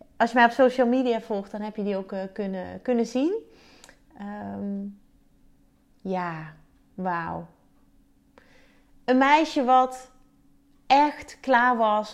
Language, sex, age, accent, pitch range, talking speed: Dutch, female, 30-49, Dutch, 195-250 Hz, 120 wpm